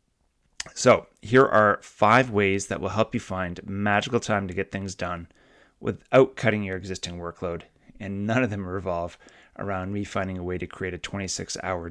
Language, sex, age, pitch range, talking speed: English, male, 30-49, 95-105 Hz, 175 wpm